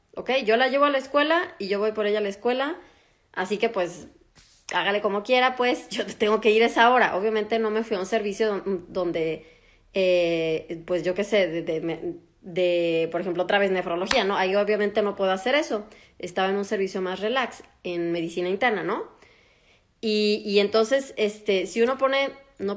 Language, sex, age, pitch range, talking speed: Spanish, female, 20-39, 185-230 Hz, 200 wpm